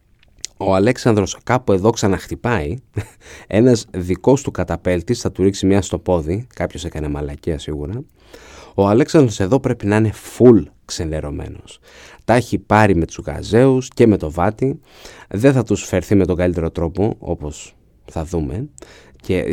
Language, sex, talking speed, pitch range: Greek, male, 150 wpm, 90-110 Hz